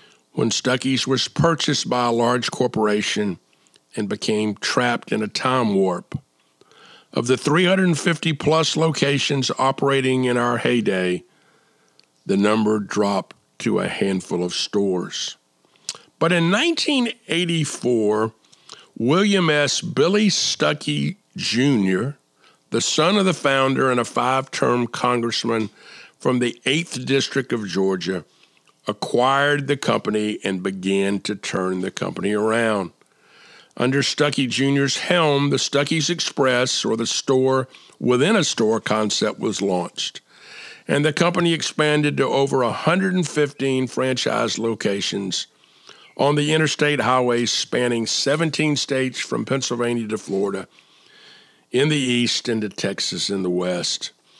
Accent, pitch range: American, 110-150 Hz